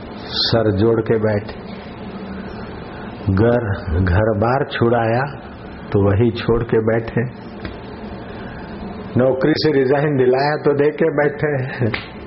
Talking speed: 105 wpm